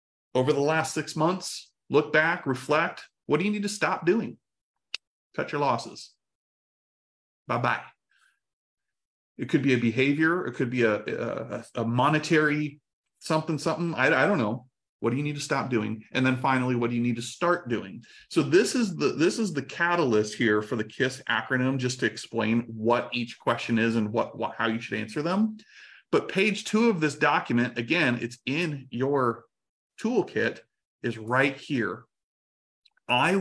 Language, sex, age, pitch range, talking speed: English, male, 30-49, 120-160 Hz, 175 wpm